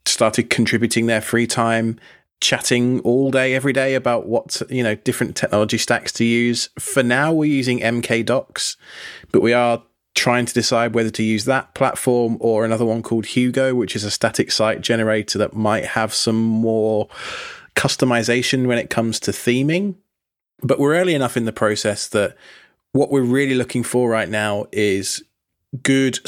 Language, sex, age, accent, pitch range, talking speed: English, male, 20-39, British, 110-125 Hz, 170 wpm